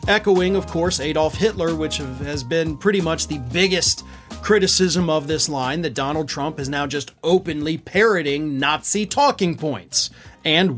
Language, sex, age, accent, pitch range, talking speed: English, male, 30-49, American, 155-205 Hz, 160 wpm